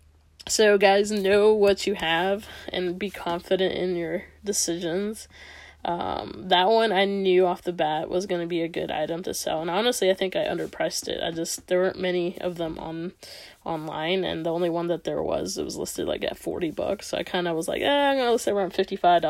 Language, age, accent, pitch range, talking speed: English, 10-29, American, 175-200 Hz, 220 wpm